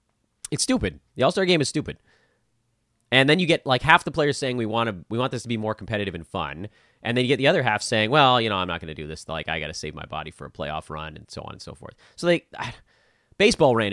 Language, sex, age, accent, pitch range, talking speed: English, male, 30-49, American, 105-155 Hz, 290 wpm